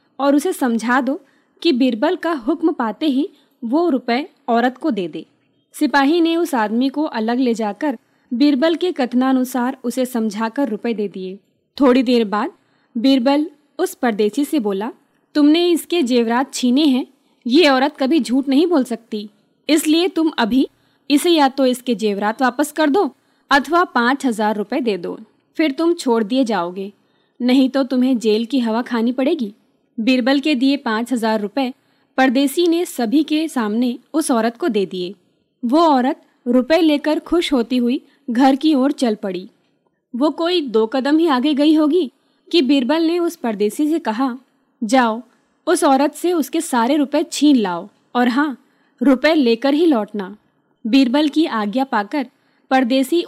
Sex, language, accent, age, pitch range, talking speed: female, Hindi, native, 20-39, 240-300 Hz, 165 wpm